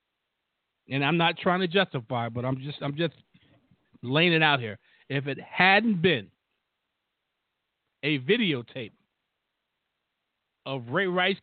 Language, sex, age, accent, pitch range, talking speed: English, male, 50-69, American, 130-175 Hz, 130 wpm